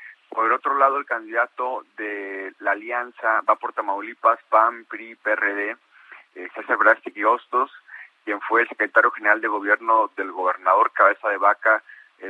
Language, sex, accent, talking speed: Spanish, male, Mexican, 150 wpm